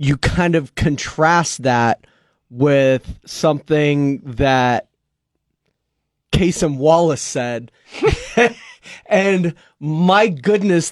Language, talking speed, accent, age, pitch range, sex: English, 75 wpm, American, 30-49, 130-165 Hz, male